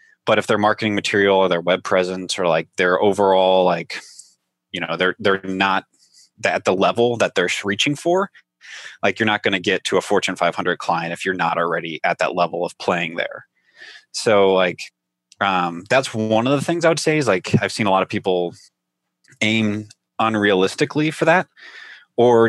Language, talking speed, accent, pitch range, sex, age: English, 190 wpm, American, 90-120 Hz, male, 20-39